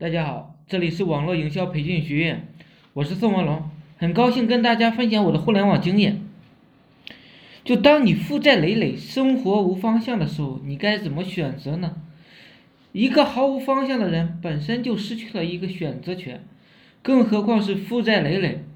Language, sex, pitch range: Chinese, male, 170-240 Hz